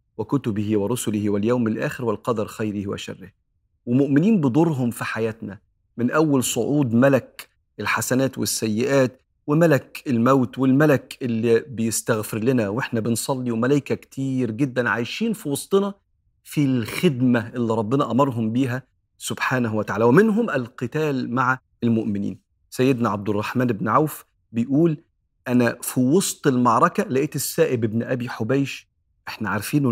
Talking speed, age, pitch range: 120 wpm, 40-59, 115-145 Hz